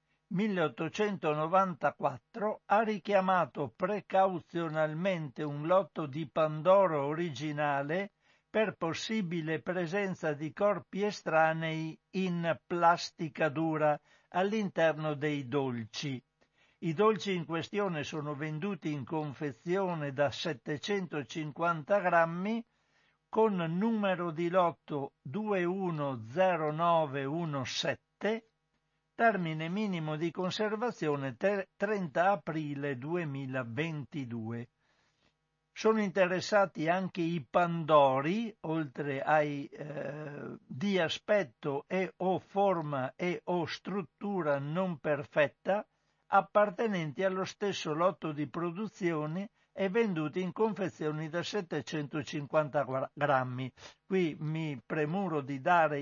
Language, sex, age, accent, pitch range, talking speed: Italian, male, 60-79, native, 150-190 Hz, 85 wpm